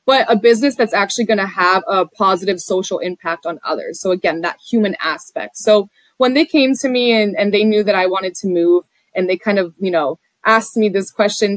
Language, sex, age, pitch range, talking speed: English, female, 20-39, 190-235 Hz, 230 wpm